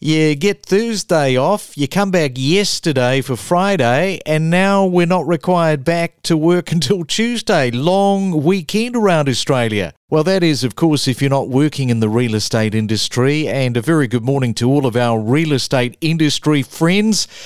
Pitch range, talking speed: 130-170 Hz, 175 wpm